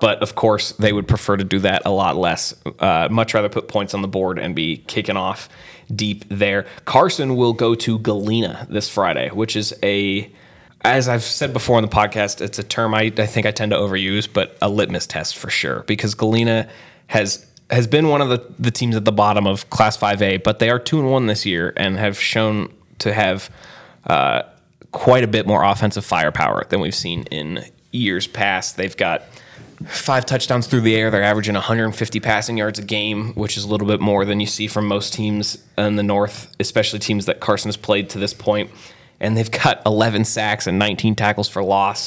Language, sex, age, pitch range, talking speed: English, male, 20-39, 100-115 Hz, 215 wpm